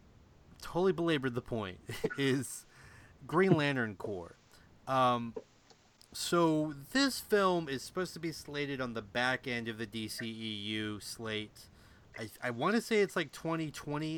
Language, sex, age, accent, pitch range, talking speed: English, male, 30-49, American, 120-160 Hz, 135 wpm